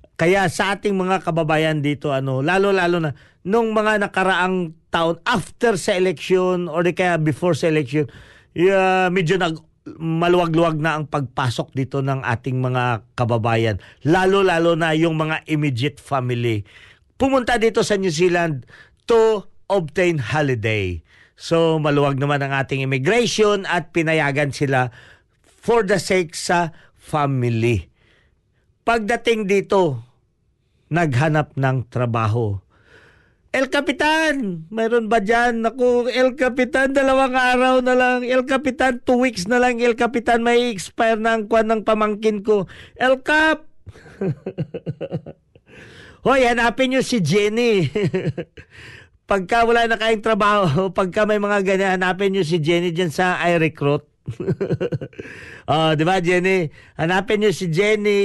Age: 50-69